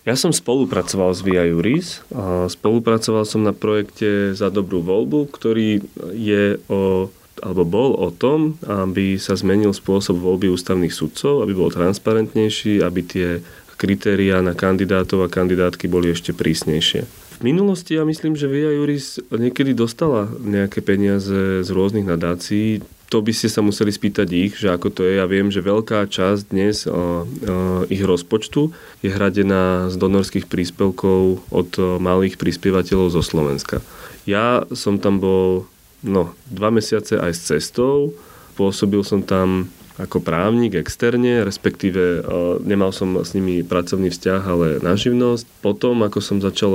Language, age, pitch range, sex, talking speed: Slovak, 30-49, 90-105 Hz, male, 150 wpm